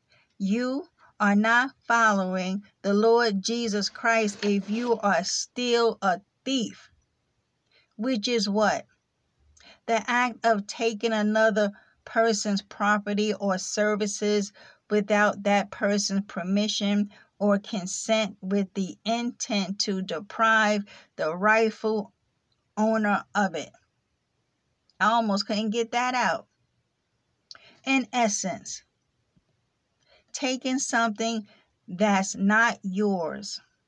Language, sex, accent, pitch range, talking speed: English, female, American, 205-230 Hz, 95 wpm